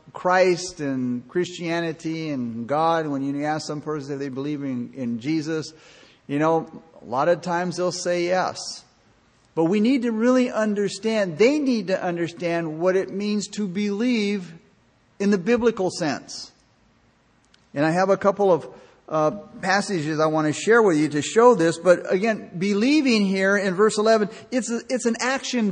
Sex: male